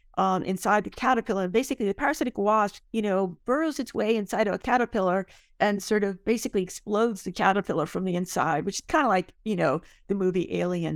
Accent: American